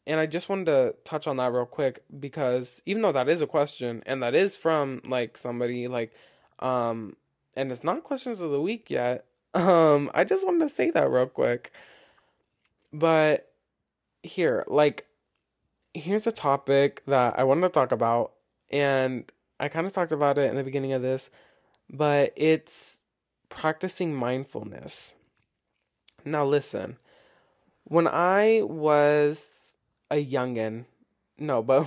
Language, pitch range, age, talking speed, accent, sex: English, 125-150 Hz, 20-39, 150 wpm, American, male